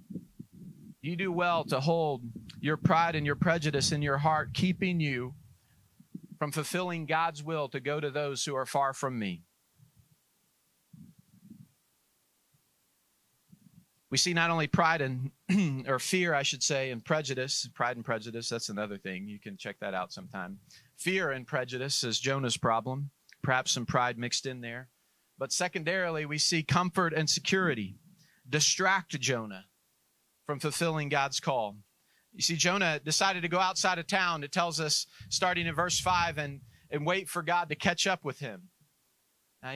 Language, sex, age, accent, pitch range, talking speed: English, male, 40-59, American, 140-180 Hz, 160 wpm